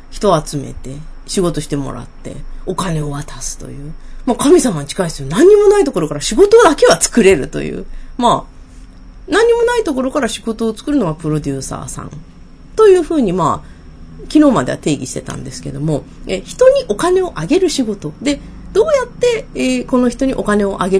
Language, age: Japanese, 30-49